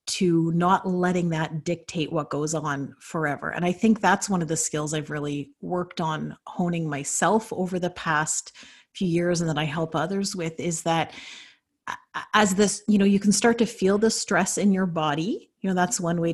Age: 30-49